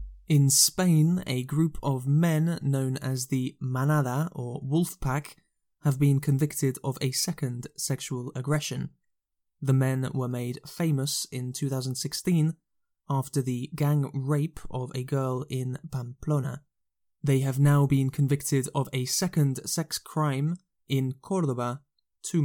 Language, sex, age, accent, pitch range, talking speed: English, male, 20-39, British, 130-160 Hz, 130 wpm